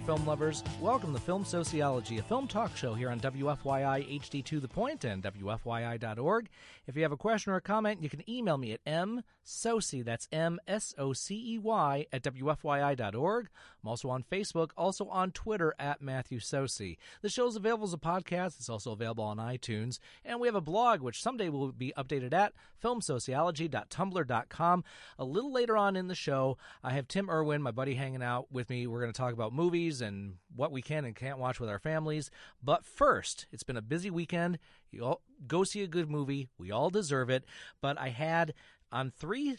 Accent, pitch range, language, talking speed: American, 130-180 Hz, English, 190 wpm